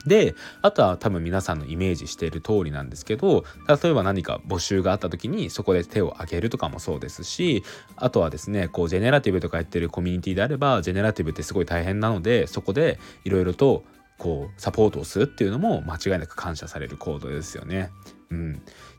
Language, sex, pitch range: Japanese, male, 90-135 Hz